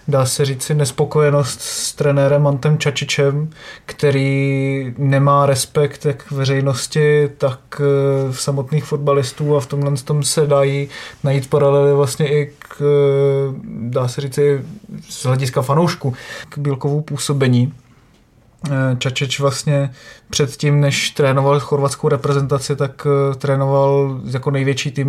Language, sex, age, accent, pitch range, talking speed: Czech, male, 20-39, native, 135-145 Hz, 120 wpm